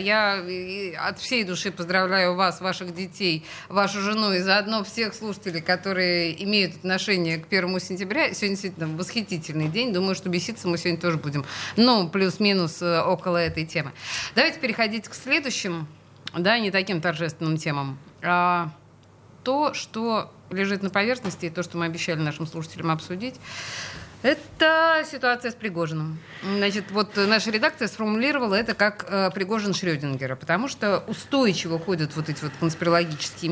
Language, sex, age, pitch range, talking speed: Russian, female, 30-49, 165-210 Hz, 145 wpm